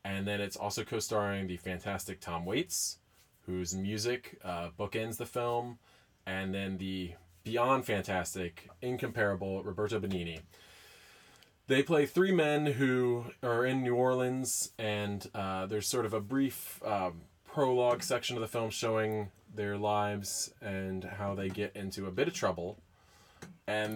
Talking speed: 145 wpm